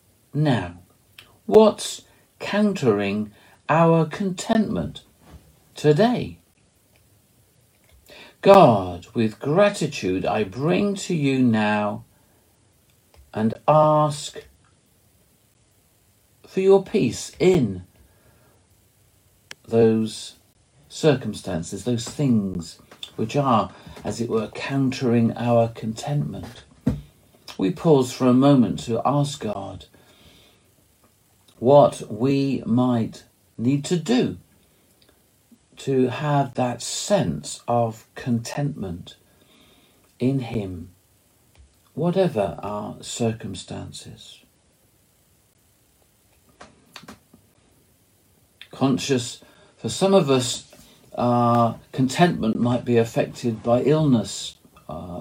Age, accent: 50-69, British